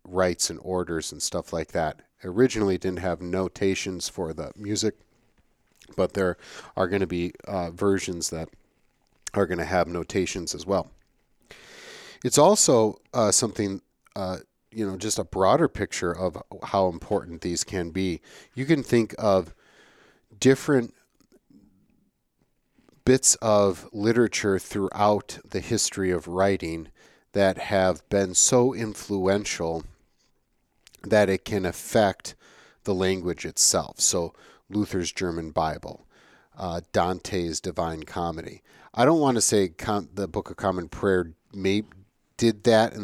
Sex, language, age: male, English, 40-59